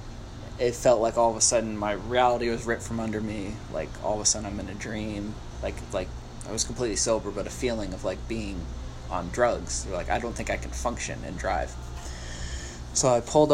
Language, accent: English, American